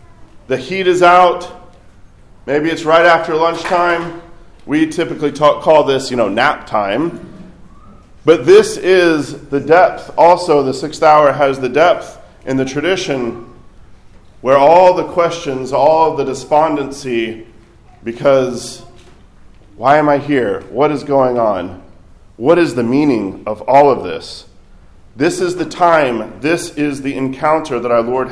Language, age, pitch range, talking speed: English, 40-59, 115-155 Hz, 140 wpm